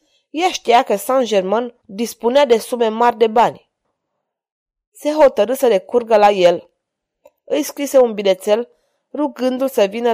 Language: Romanian